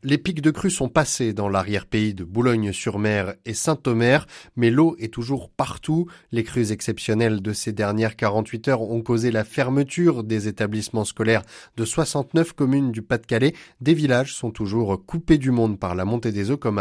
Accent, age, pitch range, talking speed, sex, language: French, 30-49, 105-130 Hz, 180 wpm, male, French